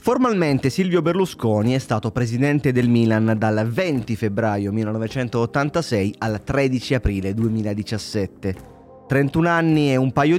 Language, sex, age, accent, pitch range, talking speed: Italian, male, 30-49, native, 105-145 Hz, 120 wpm